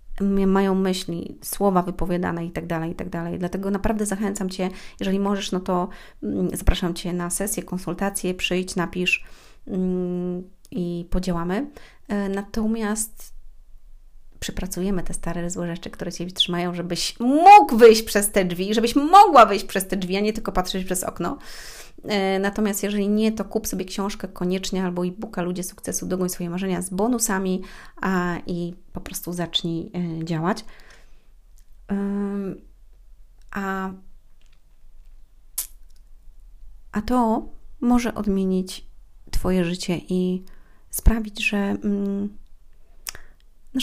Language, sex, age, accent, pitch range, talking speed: Polish, female, 30-49, native, 170-200 Hz, 125 wpm